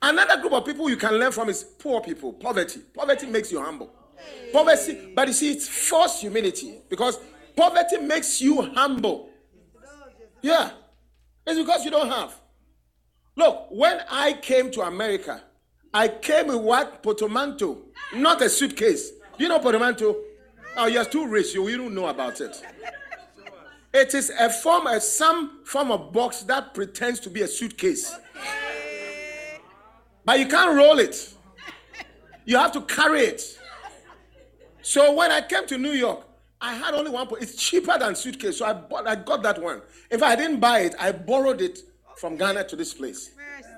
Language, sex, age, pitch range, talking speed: English, male, 40-59, 215-320 Hz, 165 wpm